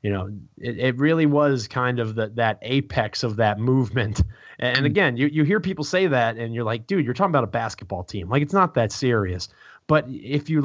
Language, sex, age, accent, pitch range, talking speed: English, male, 30-49, American, 110-135 Hz, 225 wpm